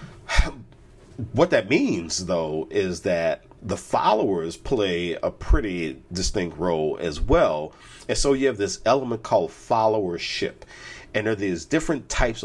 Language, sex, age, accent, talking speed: English, male, 50-69, American, 140 wpm